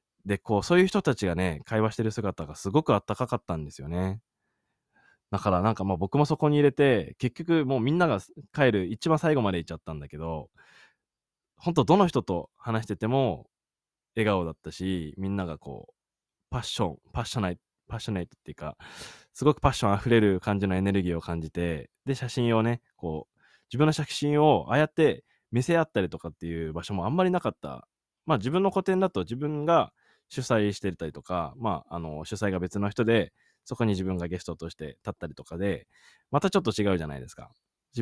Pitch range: 85-130 Hz